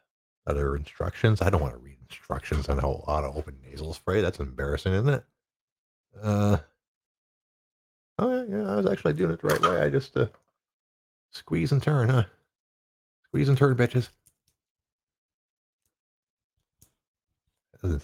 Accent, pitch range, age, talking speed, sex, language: American, 75-125 Hz, 50-69, 140 wpm, male, English